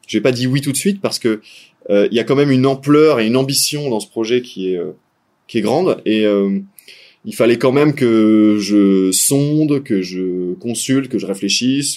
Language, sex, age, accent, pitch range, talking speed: French, male, 20-39, French, 105-135 Hz, 220 wpm